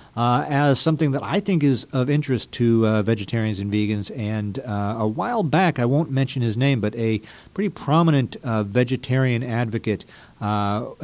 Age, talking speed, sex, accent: 50-69, 175 wpm, male, American